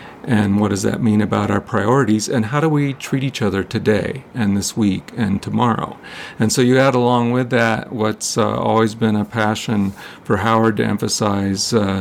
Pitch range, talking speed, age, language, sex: 100-125 Hz, 195 wpm, 50-69, English, male